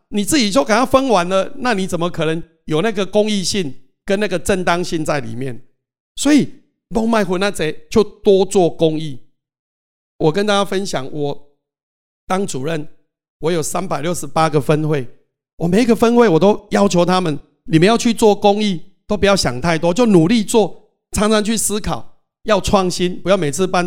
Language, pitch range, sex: Chinese, 155-200 Hz, male